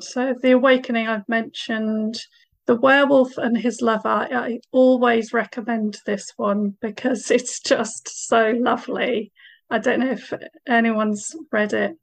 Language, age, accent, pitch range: English, 40-59, British, 220-265 Hz